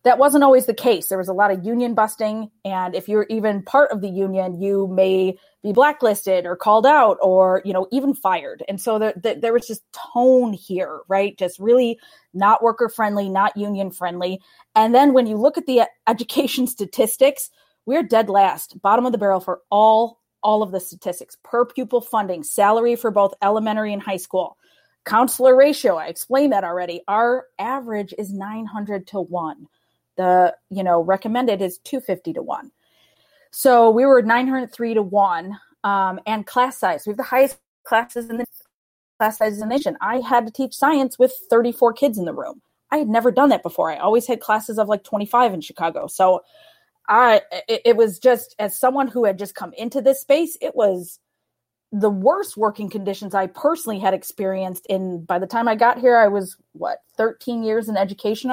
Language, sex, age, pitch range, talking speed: English, female, 20-39, 195-250 Hz, 195 wpm